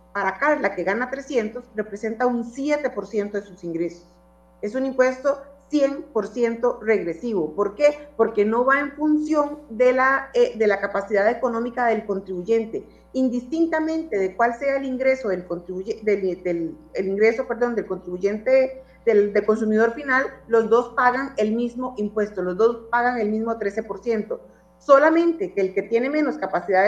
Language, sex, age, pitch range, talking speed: Spanish, female, 40-59, 200-265 Hz, 155 wpm